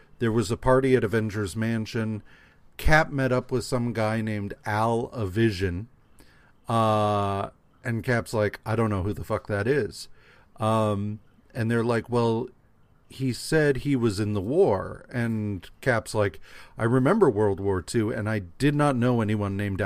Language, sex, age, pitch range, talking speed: English, male, 40-59, 105-130 Hz, 165 wpm